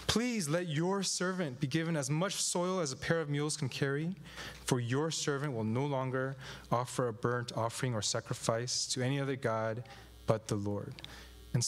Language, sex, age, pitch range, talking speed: English, male, 20-39, 125-175 Hz, 185 wpm